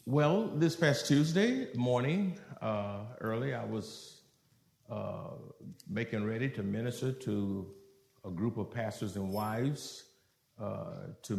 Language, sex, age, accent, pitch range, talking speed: English, male, 50-69, American, 110-135 Hz, 120 wpm